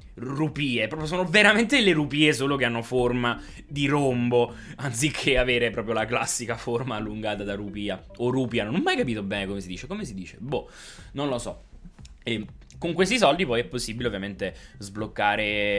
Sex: male